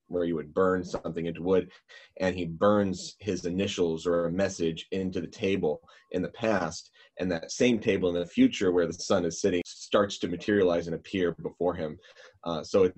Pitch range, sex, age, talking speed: 85-100 Hz, male, 30-49, 200 wpm